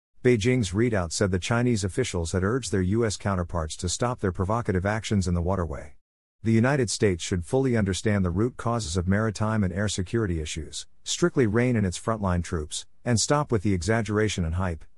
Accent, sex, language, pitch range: American, male, English, 90-115 Hz